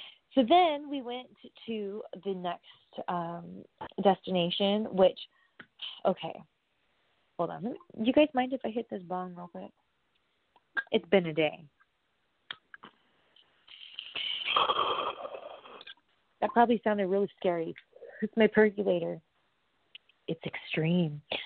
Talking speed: 105 wpm